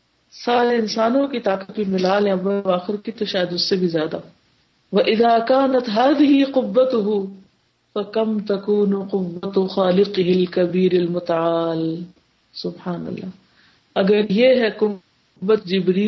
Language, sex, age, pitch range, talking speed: Urdu, female, 50-69, 185-230 Hz, 120 wpm